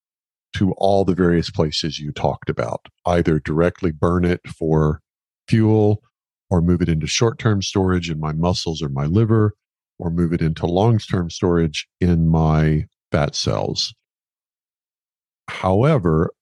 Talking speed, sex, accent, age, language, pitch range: 135 wpm, male, American, 50-69, English, 80-100 Hz